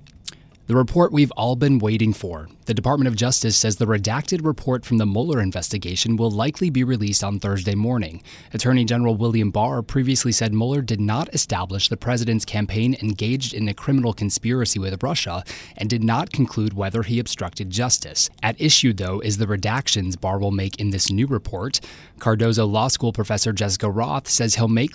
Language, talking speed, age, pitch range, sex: English, 185 wpm, 30-49, 110-175 Hz, male